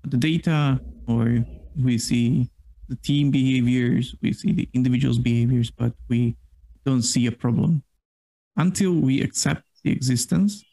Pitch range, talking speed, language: 120-145 Hz, 135 wpm, English